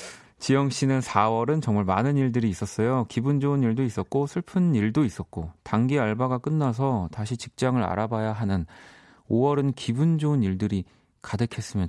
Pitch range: 100-135 Hz